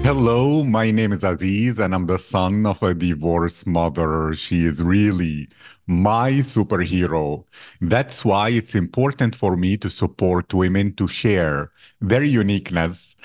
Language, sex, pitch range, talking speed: English, male, 95-120 Hz, 140 wpm